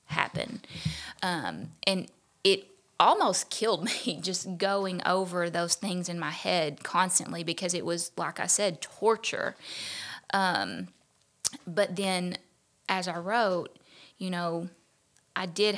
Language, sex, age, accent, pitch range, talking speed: English, female, 20-39, American, 170-195 Hz, 125 wpm